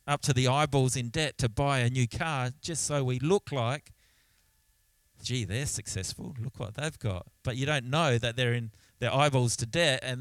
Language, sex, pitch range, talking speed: English, male, 115-150 Hz, 205 wpm